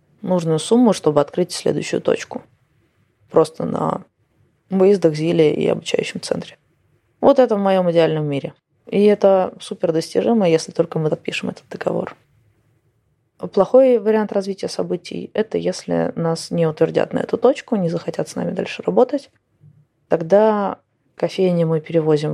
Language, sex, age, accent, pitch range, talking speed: Russian, female, 20-39, native, 150-200 Hz, 140 wpm